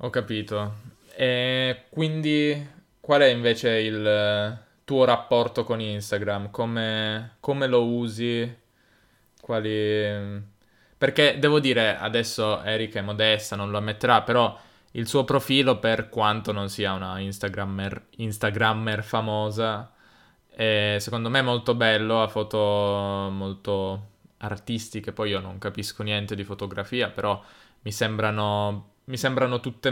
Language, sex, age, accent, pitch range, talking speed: Italian, male, 20-39, native, 105-120 Hz, 125 wpm